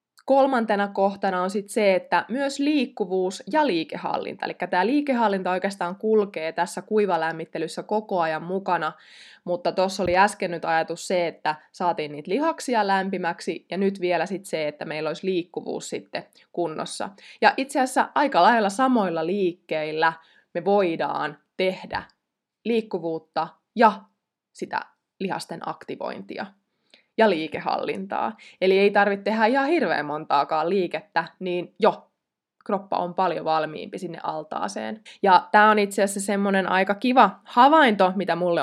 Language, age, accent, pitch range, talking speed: Finnish, 20-39, native, 170-220 Hz, 135 wpm